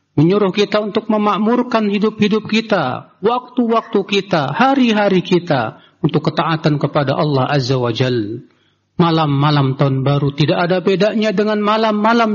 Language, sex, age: Indonesian, male, 40-59